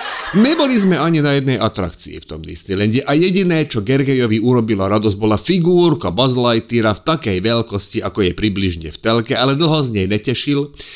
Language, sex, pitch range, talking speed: Slovak, male, 105-145 Hz, 175 wpm